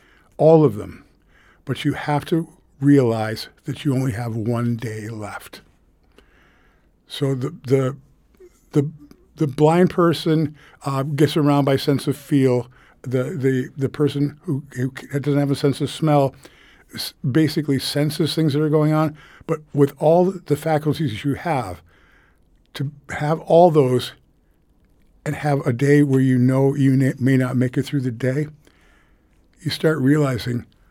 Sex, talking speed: male, 150 wpm